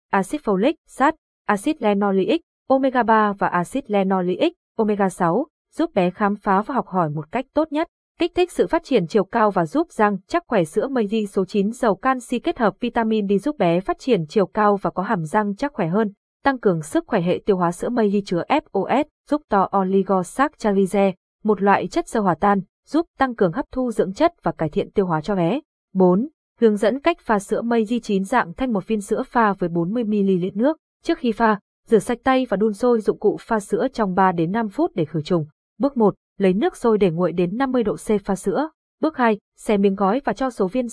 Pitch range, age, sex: 195-255 Hz, 20-39, female